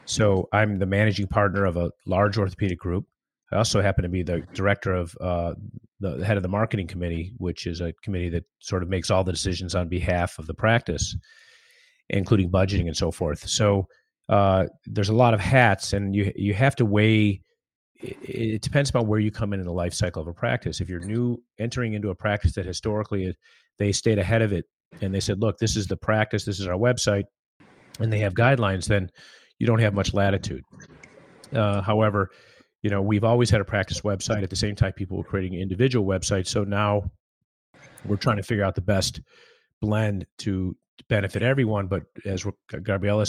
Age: 30-49